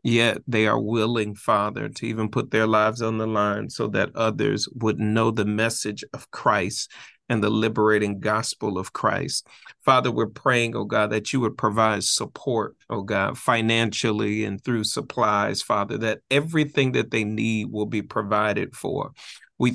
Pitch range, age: 110-125 Hz, 40-59